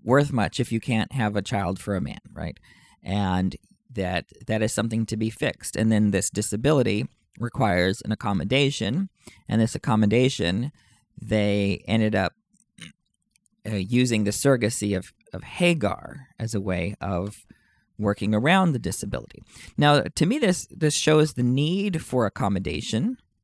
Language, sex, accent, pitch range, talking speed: English, male, American, 105-135 Hz, 150 wpm